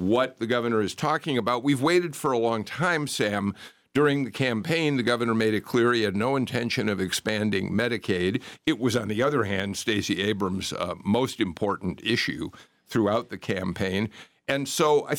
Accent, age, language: American, 50-69, English